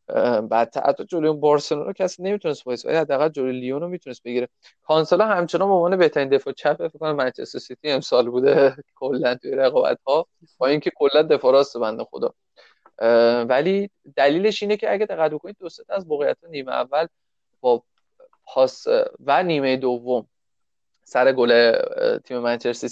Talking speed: 150 wpm